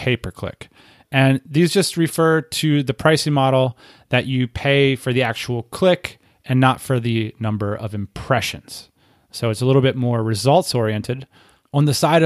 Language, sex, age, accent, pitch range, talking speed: English, male, 30-49, American, 115-155 Hz, 165 wpm